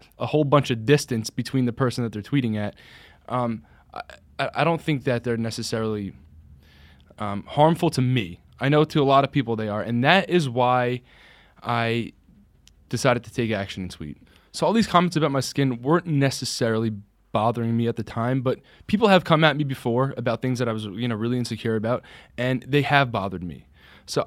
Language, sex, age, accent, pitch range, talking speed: English, male, 10-29, American, 110-145 Hz, 200 wpm